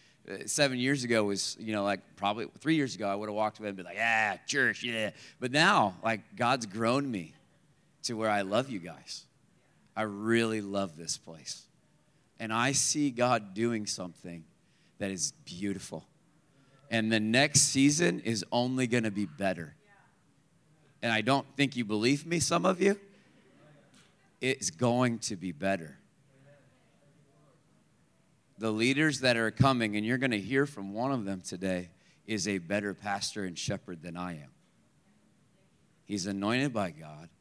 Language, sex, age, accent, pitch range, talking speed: English, male, 30-49, American, 100-135 Hz, 160 wpm